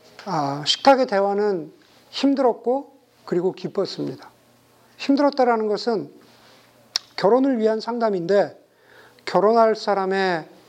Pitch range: 165-230 Hz